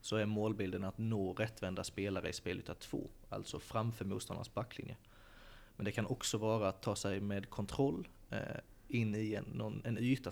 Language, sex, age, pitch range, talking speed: Swedish, male, 30-49, 100-115 Hz, 165 wpm